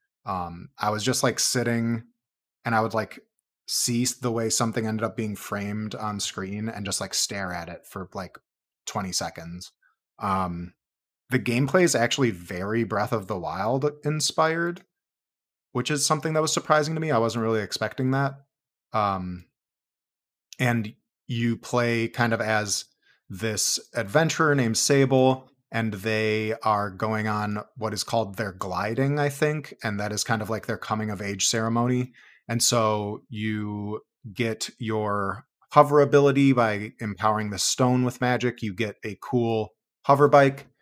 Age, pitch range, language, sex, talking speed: 30-49, 105-125 Hz, English, male, 155 wpm